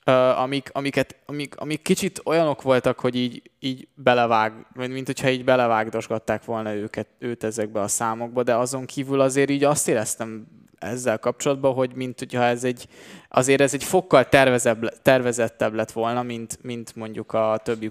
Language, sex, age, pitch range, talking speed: Hungarian, male, 20-39, 115-135 Hz, 155 wpm